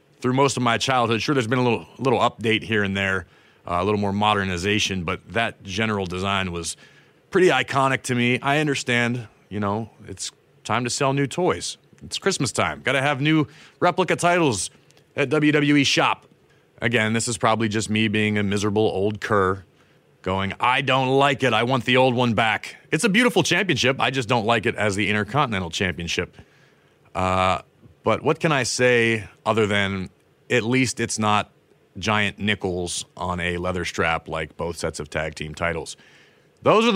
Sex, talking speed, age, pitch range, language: male, 185 wpm, 30-49, 100-135 Hz, English